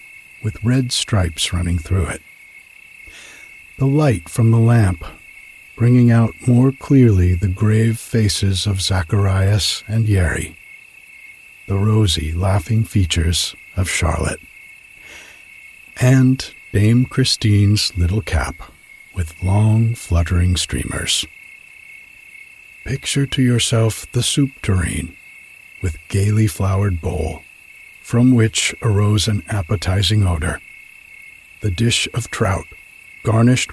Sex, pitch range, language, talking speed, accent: male, 95-125 Hz, English, 105 wpm, American